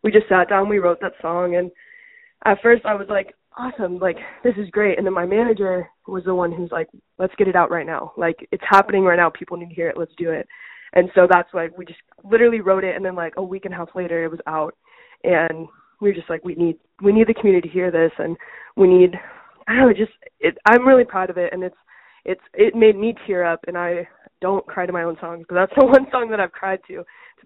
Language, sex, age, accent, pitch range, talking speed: English, female, 20-39, American, 175-215 Hz, 260 wpm